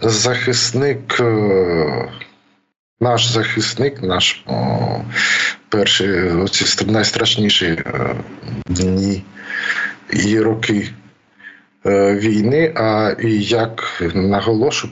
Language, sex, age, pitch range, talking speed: Ukrainian, male, 50-69, 105-120 Hz, 70 wpm